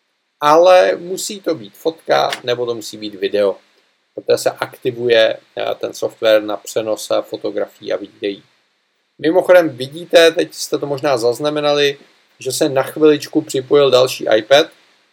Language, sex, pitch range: Czech, male, 125-170 Hz